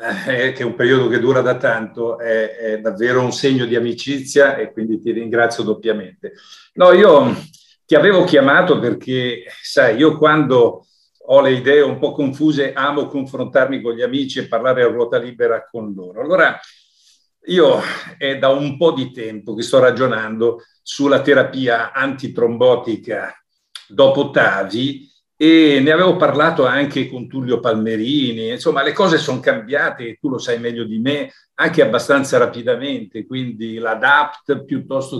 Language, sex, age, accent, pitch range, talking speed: English, male, 50-69, Italian, 120-155 Hz, 150 wpm